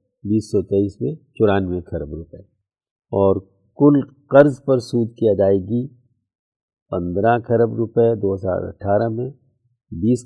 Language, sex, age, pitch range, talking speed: Urdu, male, 50-69, 95-125 Hz, 105 wpm